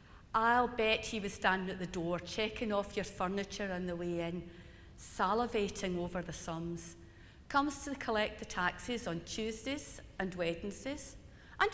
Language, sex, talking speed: English, female, 155 wpm